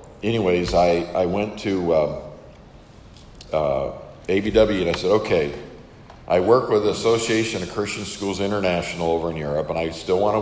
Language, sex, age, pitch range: English, male, 50-69, 85-105 Hz